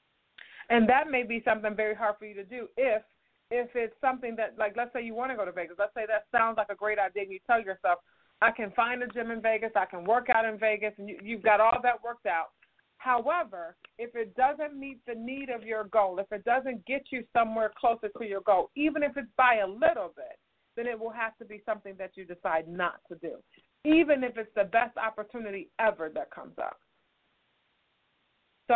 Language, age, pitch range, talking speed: English, 40-59, 195-235 Hz, 225 wpm